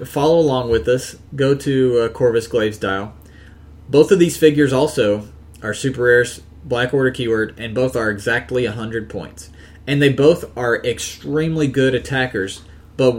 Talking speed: 160 wpm